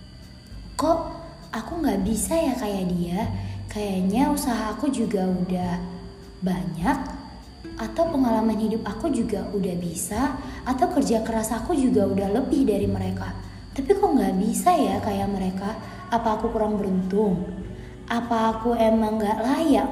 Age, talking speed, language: 20-39, 135 wpm, Indonesian